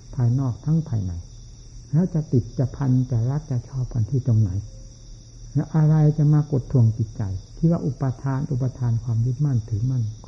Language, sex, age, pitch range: Thai, male, 60-79, 115-145 Hz